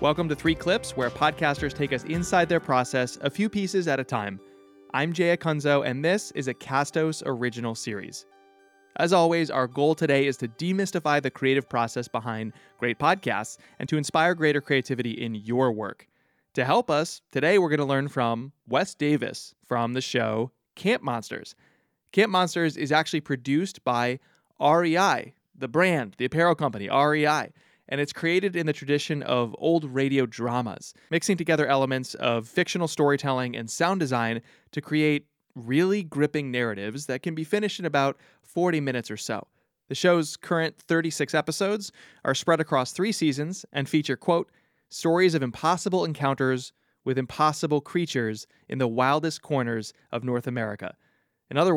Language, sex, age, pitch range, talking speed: English, male, 20-39, 125-160 Hz, 165 wpm